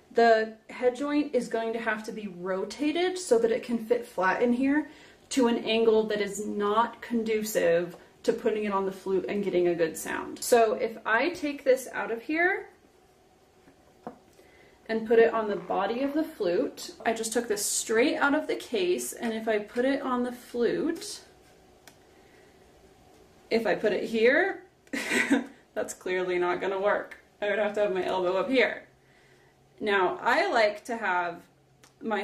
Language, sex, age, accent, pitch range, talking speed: English, female, 30-49, American, 210-270 Hz, 175 wpm